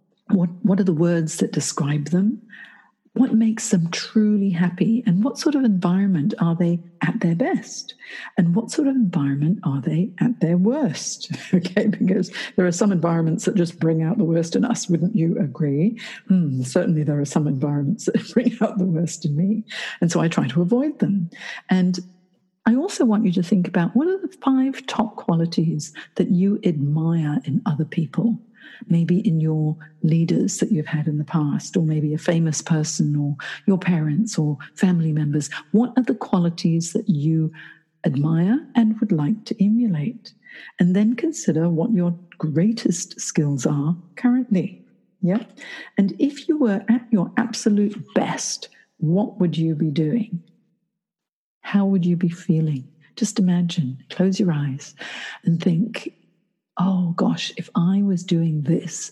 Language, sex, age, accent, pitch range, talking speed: English, female, 50-69, British, 165-215 Hz, 165 wpm